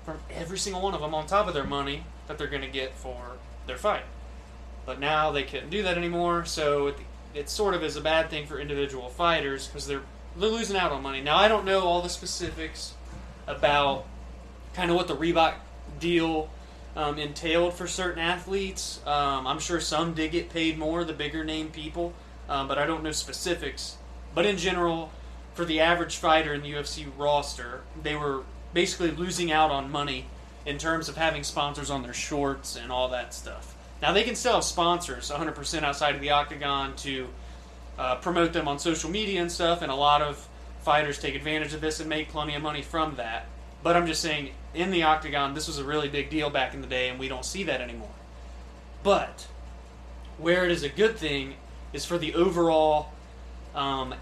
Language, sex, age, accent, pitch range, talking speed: English, male, 20-39, American, 135-170 Hz, 200 wpm